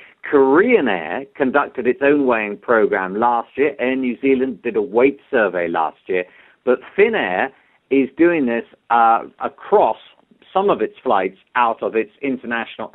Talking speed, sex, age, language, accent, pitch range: 155 wpm, male, 50-69, English, British, 120-180 Hz